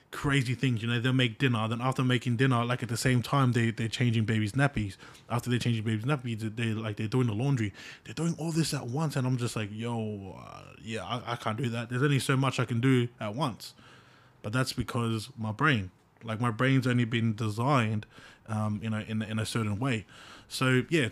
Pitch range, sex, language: 115-140 Hz, male, English